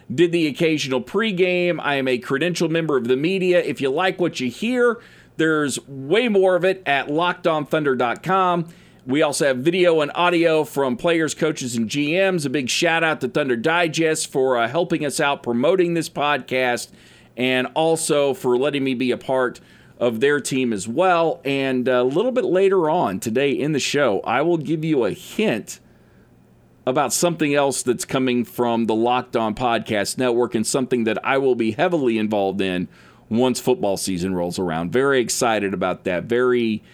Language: English